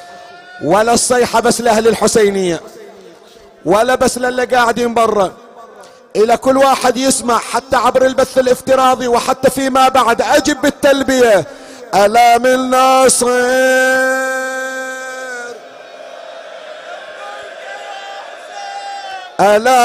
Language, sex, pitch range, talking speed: Arabic, male, 240-260 Hz, 80 wpm